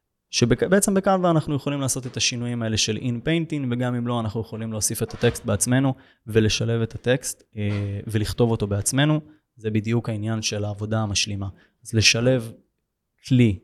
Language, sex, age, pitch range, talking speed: Hebrew, male, 20-39, 110-135 Hz, 155 wpm